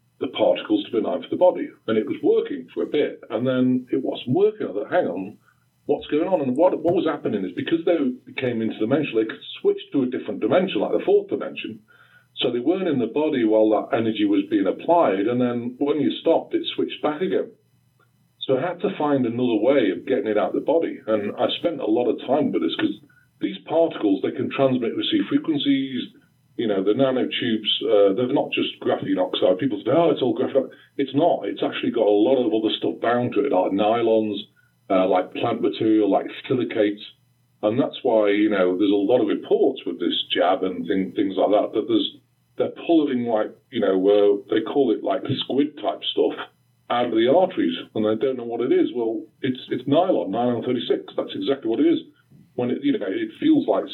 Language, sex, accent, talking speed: English, female, British, 225 wpm